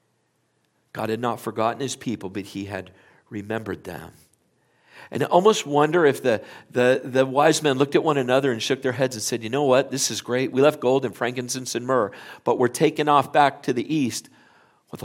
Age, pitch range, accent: 50-69, 110-145 Hz, American